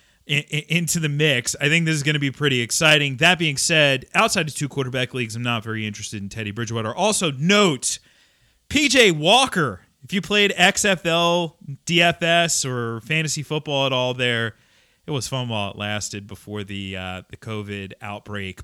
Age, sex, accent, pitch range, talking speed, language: 30-49, male, American, 115-180 Hz, 170 wpm, English